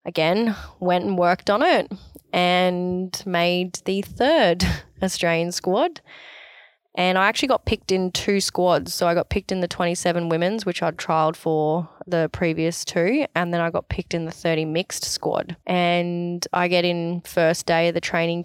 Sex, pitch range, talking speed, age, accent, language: female, 165-180 Hz, 175 wpm, 20-39, Australian, English